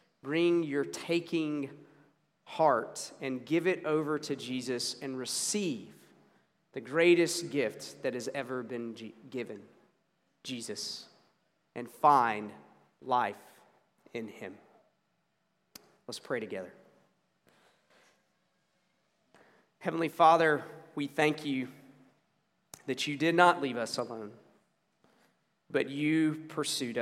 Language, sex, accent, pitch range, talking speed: English, male, American, 130-165 Hz, 100 wpm